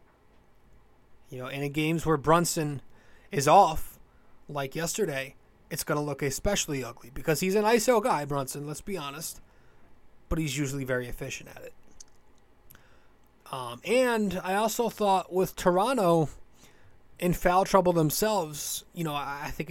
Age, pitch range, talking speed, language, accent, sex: 20-39, 145-185 Hz, 145 wpm, English, American, male